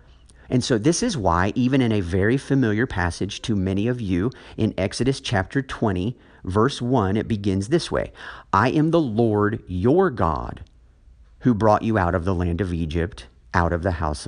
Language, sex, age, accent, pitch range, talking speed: English, male, 50-69, American, 85-120 Hz, 185 wpm